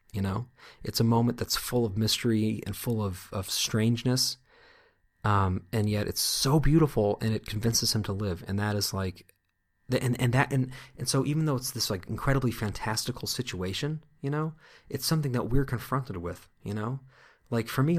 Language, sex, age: English, male, 30-49